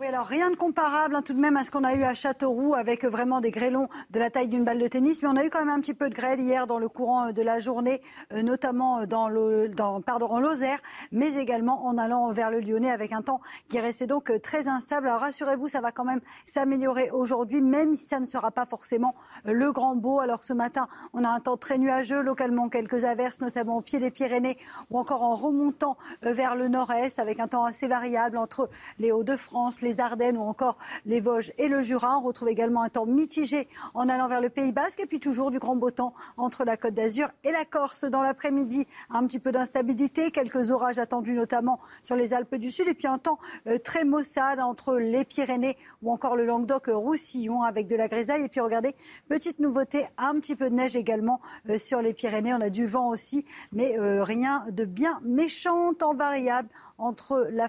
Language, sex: French, female